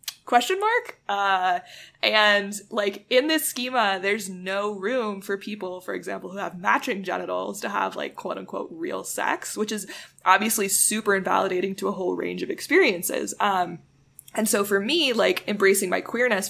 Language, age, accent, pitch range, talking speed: English, 20-39, American, 185-235 Hz, 165 wpm